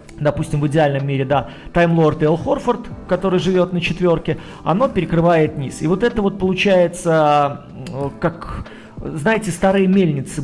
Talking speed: 140 wpm